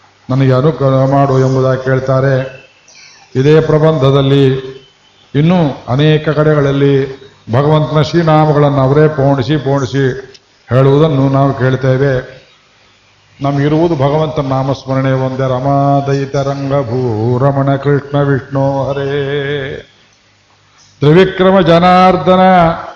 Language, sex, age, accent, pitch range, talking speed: Kannada, male, 50-69, native, 130-155 Hz, 80 wpm